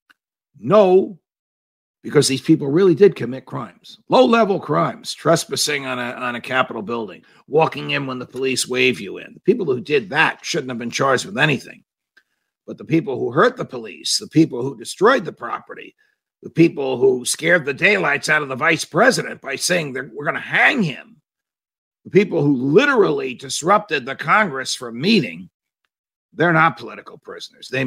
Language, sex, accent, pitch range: English, male, American, 120-170 Hz